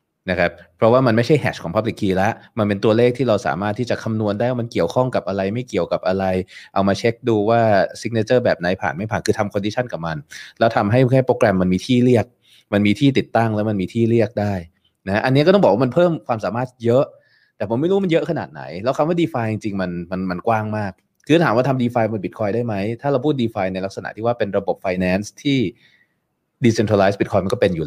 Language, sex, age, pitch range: Thai, male, 20-39, 90-115 Hz